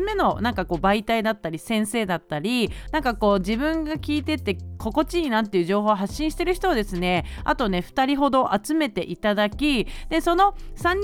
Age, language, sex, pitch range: 40-59, Japanese, female, 195-300 Hz